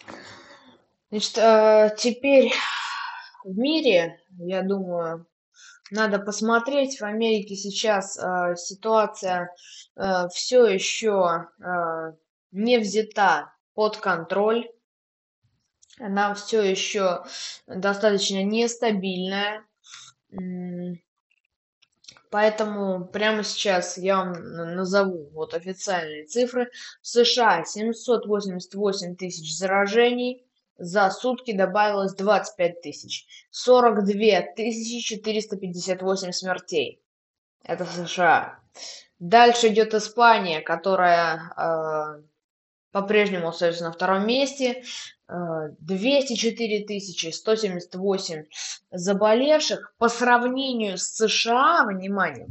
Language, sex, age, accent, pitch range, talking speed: Russian, female, 20-39, native, 180-230 Hz, 75 wpm